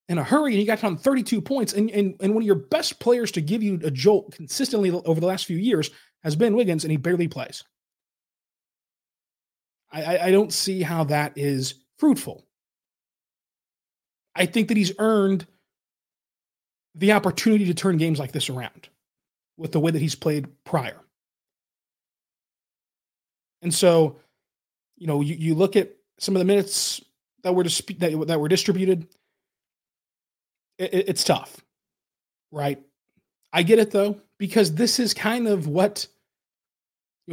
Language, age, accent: English, 30-49, American